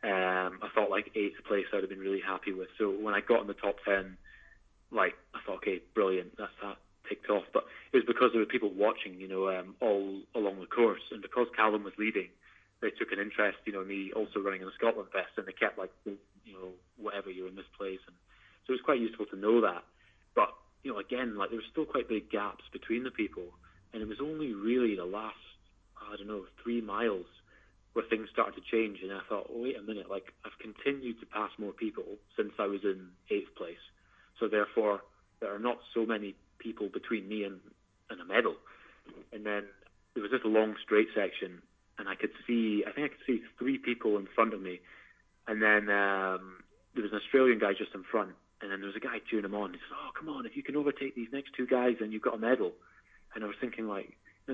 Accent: British